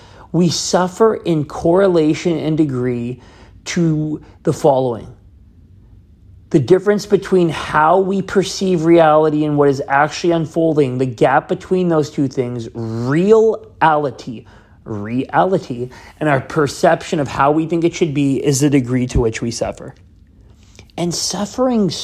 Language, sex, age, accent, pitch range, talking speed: English, male, 40-59, American, 130-175 Hz, 130 wpm